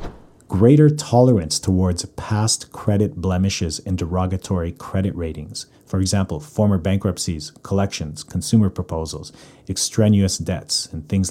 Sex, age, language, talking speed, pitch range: male, 40-59, English, 110 wpm, 85-110 Hz